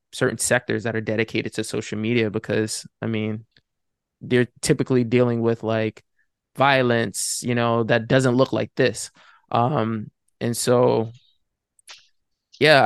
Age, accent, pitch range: 20-39, American, 110-125 Hz